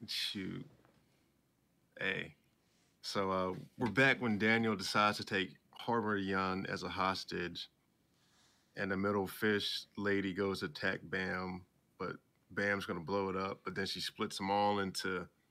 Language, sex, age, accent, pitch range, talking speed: English, male, 20-39, American, 95-110 Hz, 150 wpm